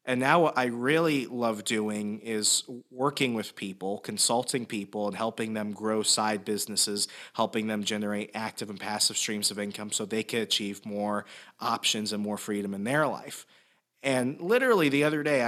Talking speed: 175 wpm